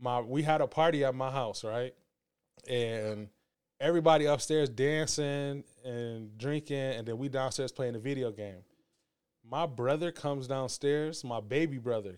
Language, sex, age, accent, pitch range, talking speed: English, male, 20-39, American, 120-150 Hz, 150 wpm